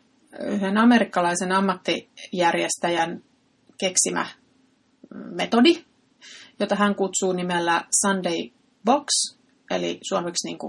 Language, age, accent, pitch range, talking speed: Finnish, 30-49, native, 185-245 Hz, 75 wpm